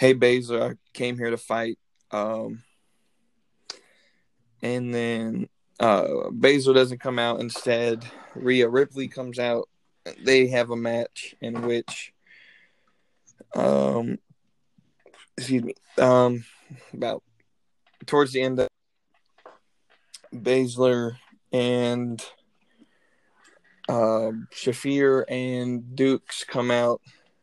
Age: 20-39